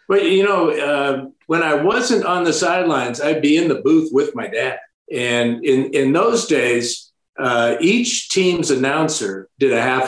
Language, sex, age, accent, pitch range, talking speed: English, male, 50-69, American, 140-195 Hz, 180 wpm